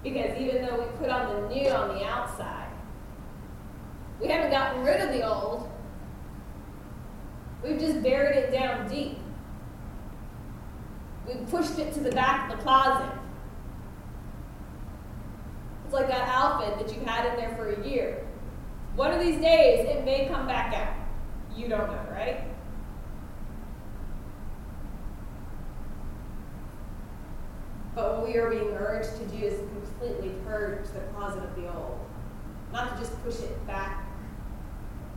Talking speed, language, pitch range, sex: 135 wpm, English, 235-295 Hz, female